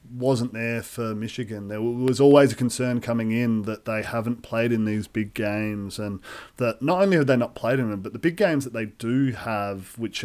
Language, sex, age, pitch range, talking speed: English, male, 30-49, 105-130 Hz, 225 wpm